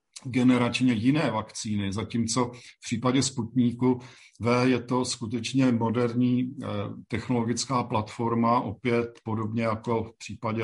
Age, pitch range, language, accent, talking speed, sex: 50-69, 110-120 Hz, Czech, native, 105 wpm, male